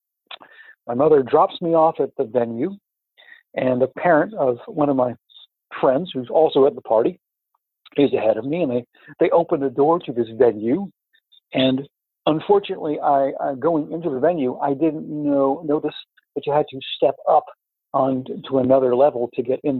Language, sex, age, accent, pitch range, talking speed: English, male, 60-79, American, 130-170 Hz, 175 wpm